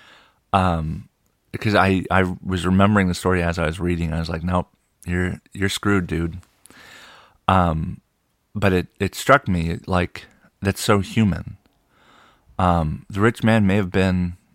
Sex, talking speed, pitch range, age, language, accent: male, 155 wpm, 85-95 Hz, 30-49, English, American